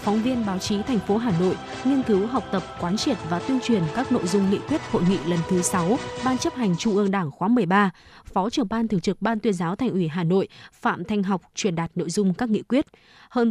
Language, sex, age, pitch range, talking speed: Vietnamese, female, 20-39, 185-235 Hz, 260 wpm